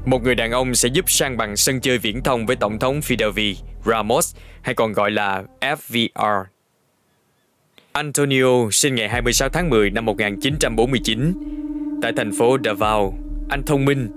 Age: 20-39